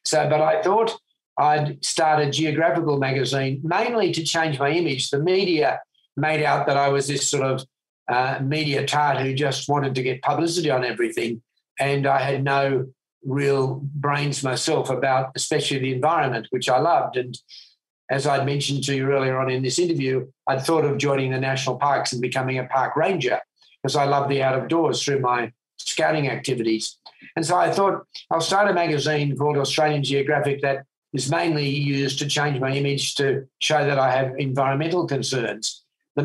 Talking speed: 180 wpm